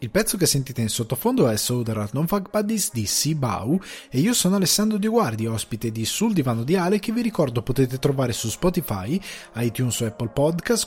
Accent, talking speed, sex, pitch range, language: native, 200 wpm, male, 125-205 Hz, Italian